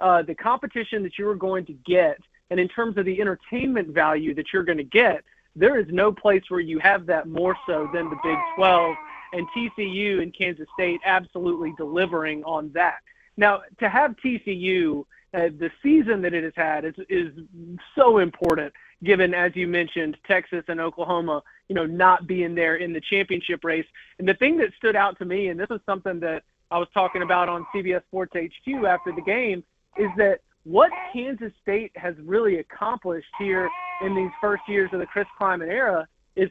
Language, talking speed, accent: English, 190 wpm, American